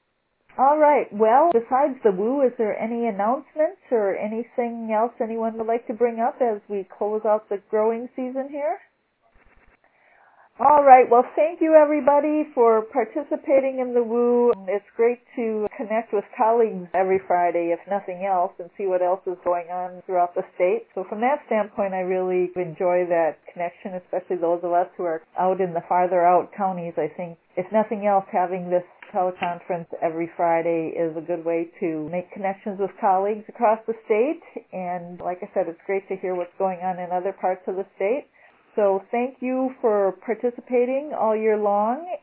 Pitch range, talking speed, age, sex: 185-245 Hz, 180 wpm, 40-59, female